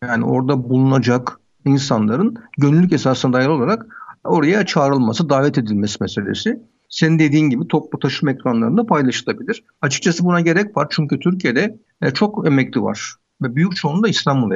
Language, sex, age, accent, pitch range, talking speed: Turkish, male, 60-79, native, 135-195 Hz, 135 wpm